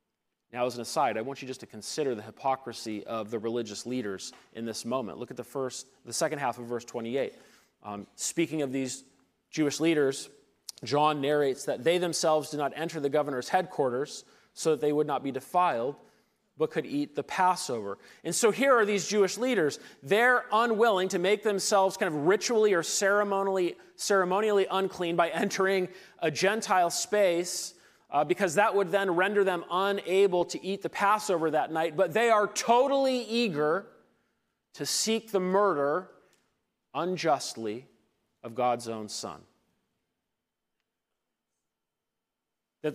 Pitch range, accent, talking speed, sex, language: 130-190 Hz, American, 155 wpm, male, English